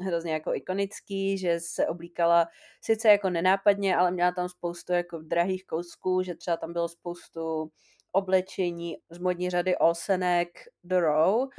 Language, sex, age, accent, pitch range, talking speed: Czech, female, 30-49, native, 165-195 Hz, 140 wpm